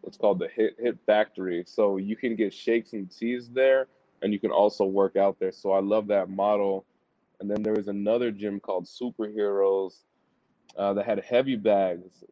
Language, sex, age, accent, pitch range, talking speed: English, male, 20-39, American, 100-115 Hz, 190 wpm